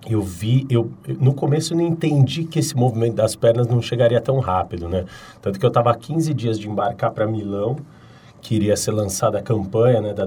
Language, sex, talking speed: Portuguese, male, 210 wpm